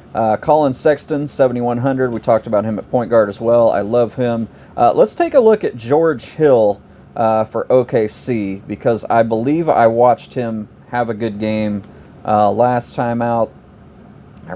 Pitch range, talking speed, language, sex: 110-130 Hz, 175 wpm, English, male